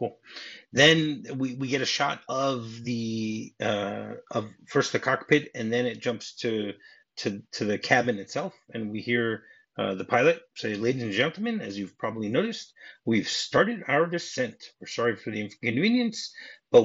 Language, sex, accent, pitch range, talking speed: English, male, American, 115-150 Hz, 170 wpm